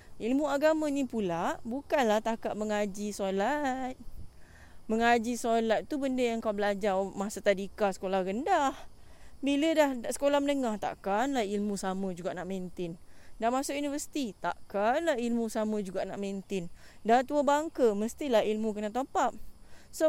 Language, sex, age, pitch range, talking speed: English, female, 20-39, 190-260 Hz, 140 wpm